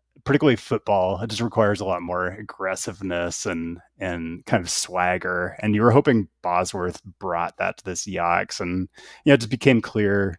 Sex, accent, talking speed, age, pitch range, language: male, American, 180 wpm, 30-49, 85-105 Hz, English